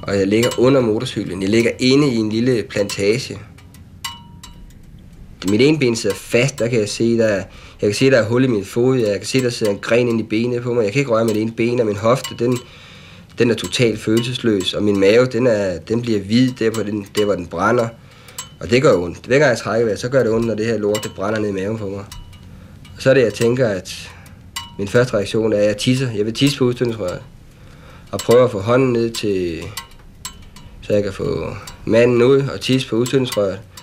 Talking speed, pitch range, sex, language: 230 wpm, 95-120 Hz, male, Danish